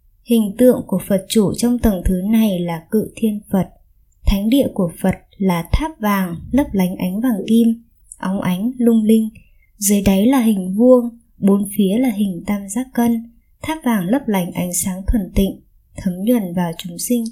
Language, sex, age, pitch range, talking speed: Vietnamese, male, 20-39, 195-245 Hz, 185 wpm